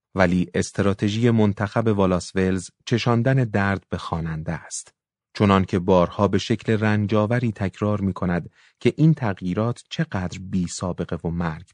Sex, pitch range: male, 90-120 Hz